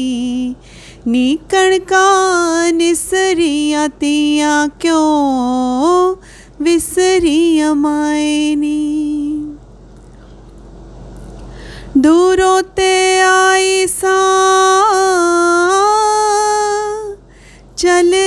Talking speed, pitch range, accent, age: 35 wpm, 300-375 Hz, native, 30-49